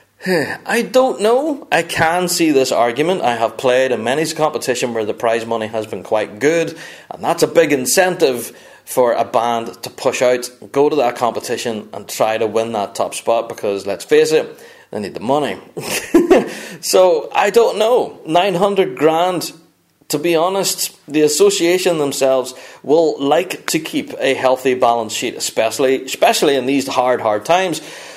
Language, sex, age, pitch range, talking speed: English, male, 30-49, 125-190 Hz, 170 wpm